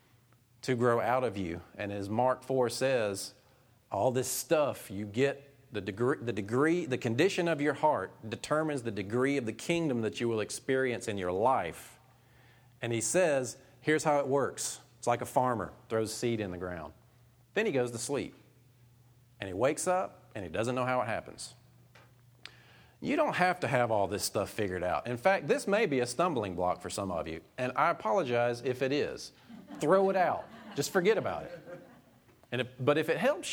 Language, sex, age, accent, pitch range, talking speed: English, male, 40-59, American, 110-140 Hz, 190 wpm